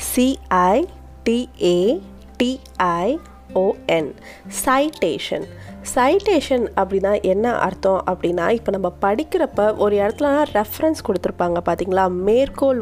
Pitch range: 180-230 Hz